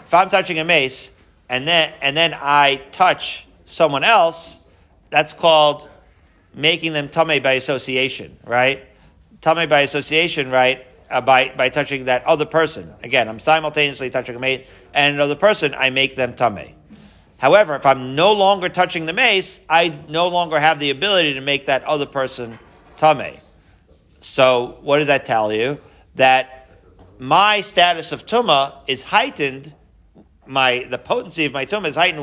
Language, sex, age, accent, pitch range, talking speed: English, male, 40-59, American, 130-160 Hz, 160 wpm